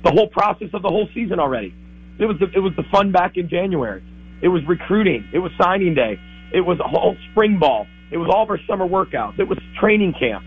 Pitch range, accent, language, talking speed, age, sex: 120-190 Hz, American, English, 240 wpm, 40-59, male